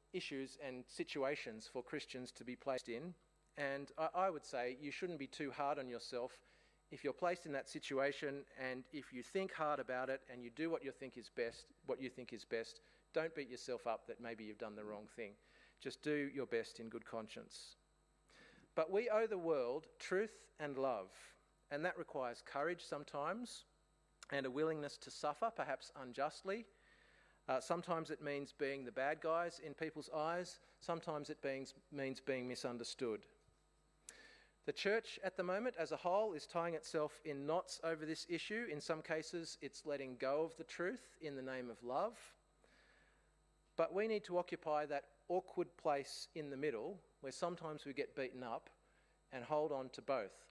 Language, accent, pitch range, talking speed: English, Australian, 130-165 Hz, 180 wpm